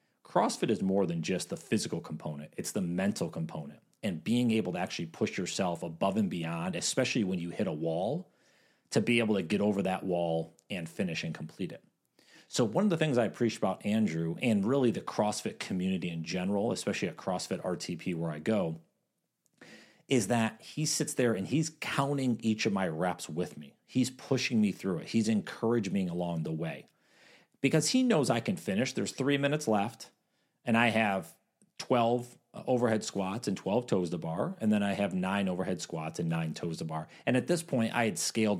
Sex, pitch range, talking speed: male, 90-125 Hz, 195 wpm